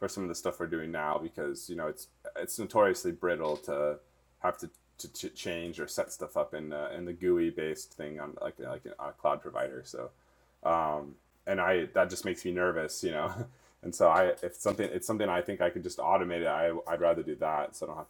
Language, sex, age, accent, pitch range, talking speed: English, male, 20-39, American, 75-90 Hz, 240 wpm